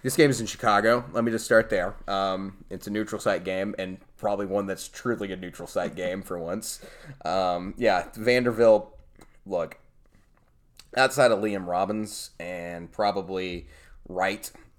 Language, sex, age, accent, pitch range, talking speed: English, male, 20-39, American, 95-110 Hz, 155 wpm